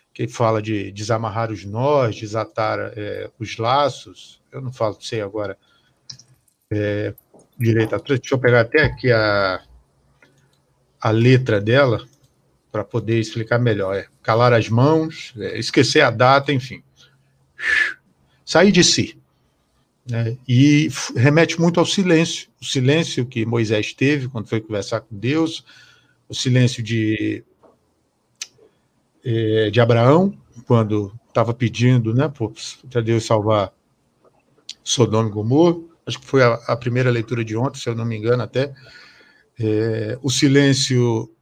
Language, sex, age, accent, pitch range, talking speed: Portuguese, male, 50-69, Brazilian, 115-140 Hz, 130 wpm